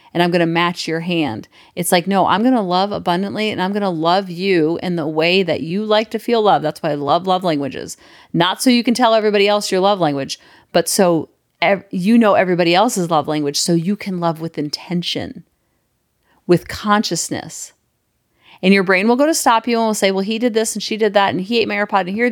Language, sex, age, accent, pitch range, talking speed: English, female, 40-59, American, 175-210 Hz, 240 wpm